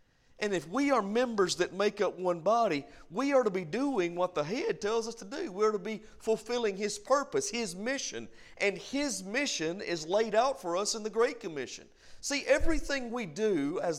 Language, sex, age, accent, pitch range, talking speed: English, male, 50-69, American, 175-245 Hz, 205 wpm